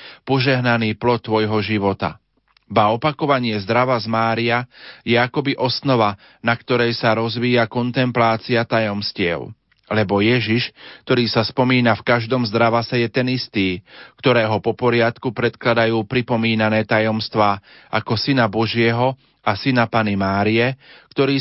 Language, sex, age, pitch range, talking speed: Slovak, male, 40-59, 110-125 Hz, 120 wpm